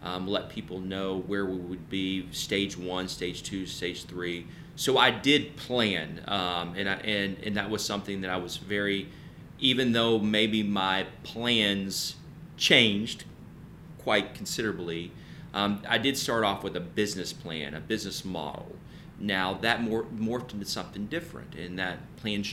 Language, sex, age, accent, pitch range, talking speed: English, male, 30-49, American, 95-110 Hz, 160 wpm